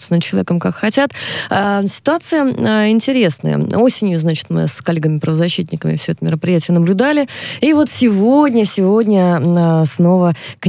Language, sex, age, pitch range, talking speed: Russian, female, 20-39, 160-220 Hz, 120 wpm